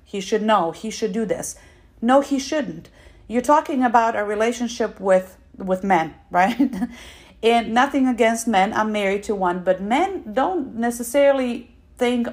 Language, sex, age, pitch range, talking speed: English, female, 40-59, 185-235 Hz, 155 wpm